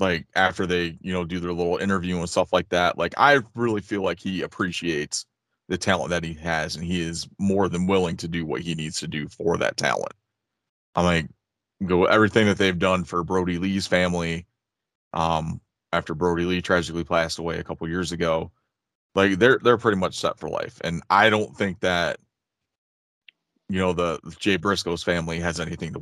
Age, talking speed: 30-49, 200 wpm